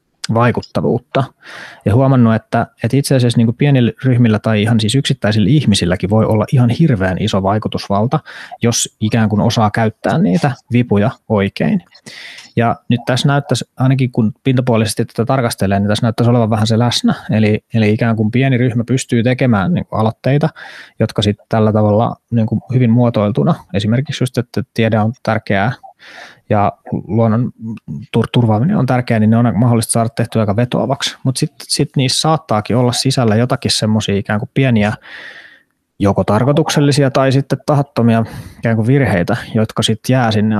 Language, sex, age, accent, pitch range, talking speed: Finnish, male, 20-39, native, 110-130 Hz, 155 wpm